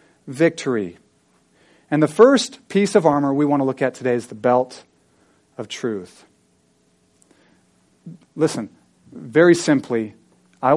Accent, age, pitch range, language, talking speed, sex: American, 40-59, 150-195 Hz, English, 125 wpm, male